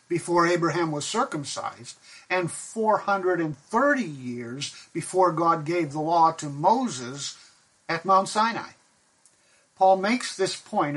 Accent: American